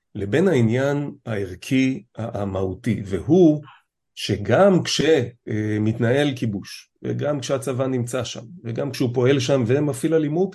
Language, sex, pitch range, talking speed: Hebrew, male, 110-135 Hz, 100 wpm